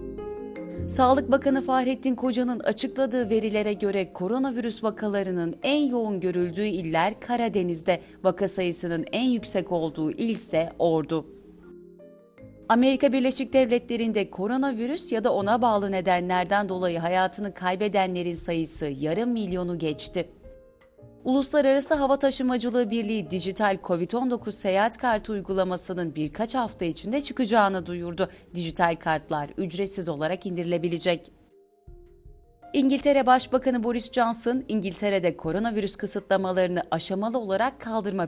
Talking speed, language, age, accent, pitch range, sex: 105 wpm, Turkish, 30-49, native, 175-255 Hz, female